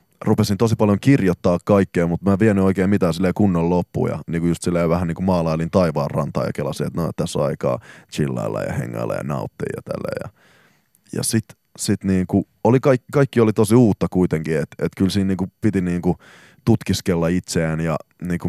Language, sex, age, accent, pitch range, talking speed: Finnish, male, 20-39, native, 80-95 Hz, 175 wpm